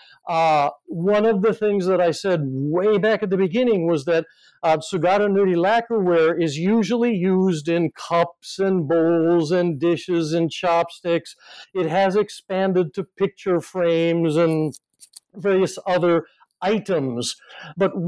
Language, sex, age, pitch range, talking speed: English, male, 60-79, 165-205 Hz, 135 wpm